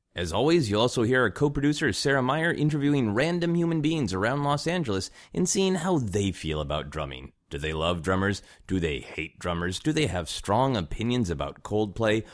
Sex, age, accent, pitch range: male, 30-49, American, 80-130 Hz